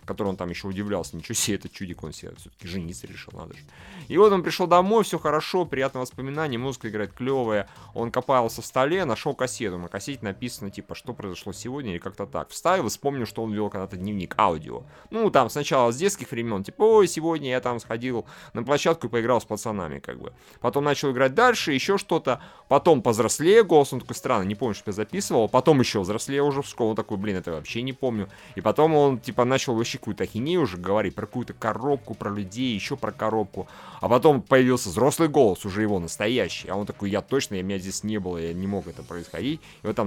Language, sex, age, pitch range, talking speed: Russian, male, 30-49, 100-135 Hz, 215 wpm